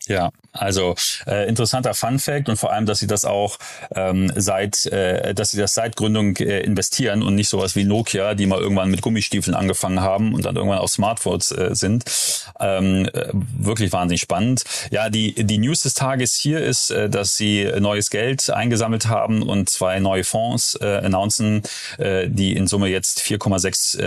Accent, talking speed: German, 185 wpm